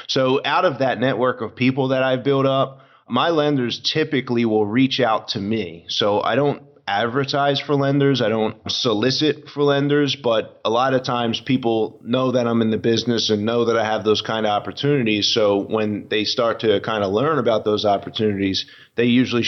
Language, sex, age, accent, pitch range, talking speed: English, male, 30-49, American, 105-130 Hz, 195 wpm